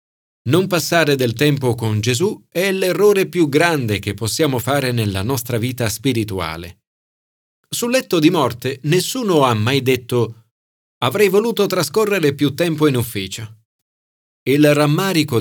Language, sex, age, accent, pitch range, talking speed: Italian, male, 40-59, native, 110-165 Hz, 130 wpm